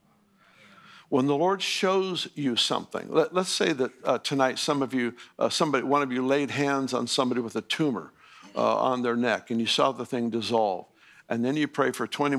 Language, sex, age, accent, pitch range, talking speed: English, male, 60-79, American, 130-165 Hz, 210 wpm